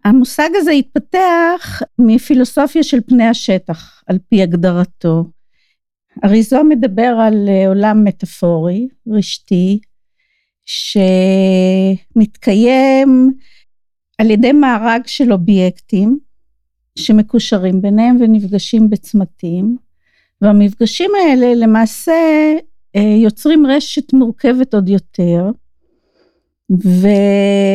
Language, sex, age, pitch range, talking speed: Hebrew, female, 50-69, 200-260 Hz, 75 wpm